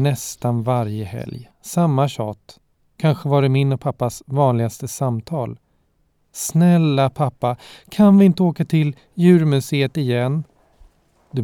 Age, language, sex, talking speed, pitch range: 40-59, Swedish, male, 120 wpm, 115-155 Hz